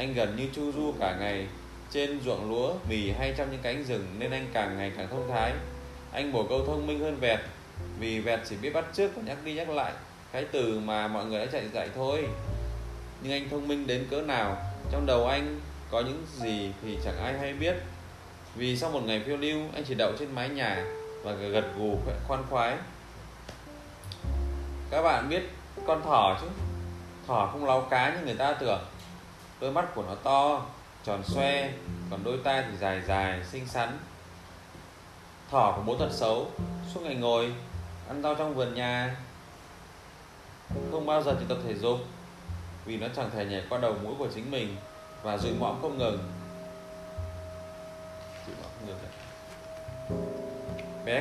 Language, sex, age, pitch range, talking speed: Vietnamese, male, 20-39, 90-135 Hz, 175 wpm